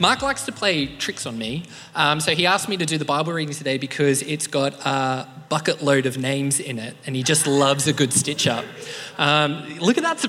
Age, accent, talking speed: 20-39, Australian, 230 wpm